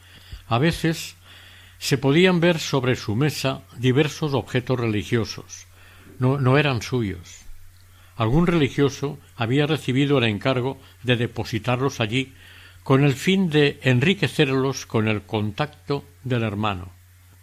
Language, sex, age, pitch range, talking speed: Spanish, male, 60-79, 95-140 Hz, 115 wpm